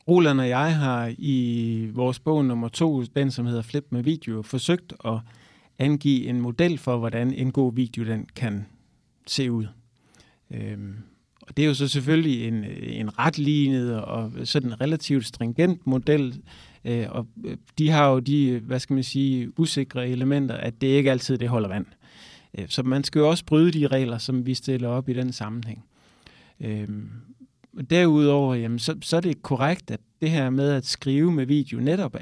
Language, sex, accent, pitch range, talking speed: Danish, male, native, 115-145 Hz, 175 wpm